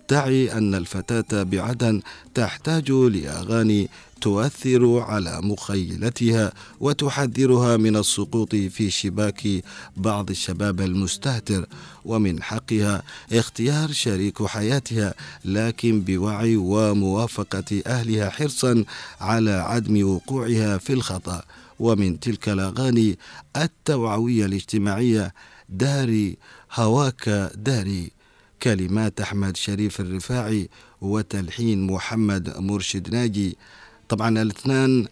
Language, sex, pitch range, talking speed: Arabic, male, 100-120 Hz, 85 wpm